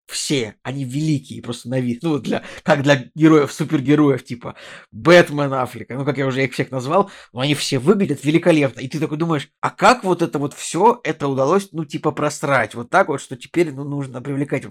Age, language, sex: 20-39, Russian, male